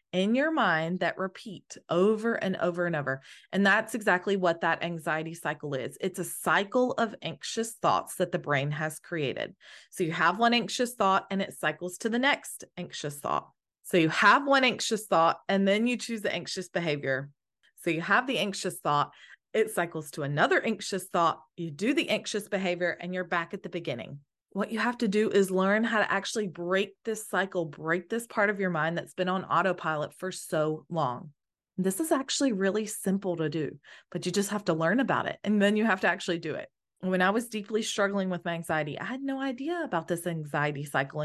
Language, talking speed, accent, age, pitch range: English, 210 wpm, American, 20-39, 165-215 Hz